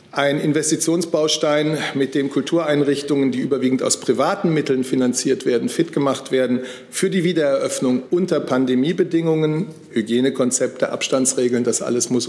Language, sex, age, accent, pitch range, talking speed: German, male, 50-69, German, 130-175 Hz, 120 wpm